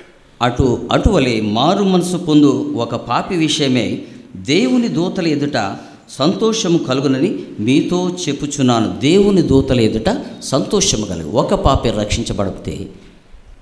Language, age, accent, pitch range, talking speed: Telugu, 50-69, native, 100-120 Hz, 100 wpm